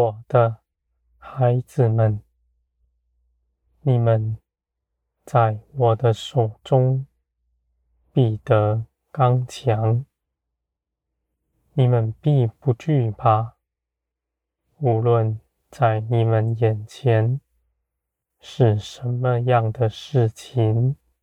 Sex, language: male, Chinese